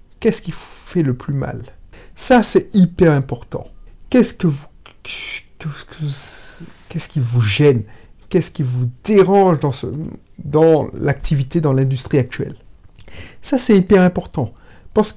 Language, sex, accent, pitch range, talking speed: French, male, French, 135-195 Hz, 135 wpm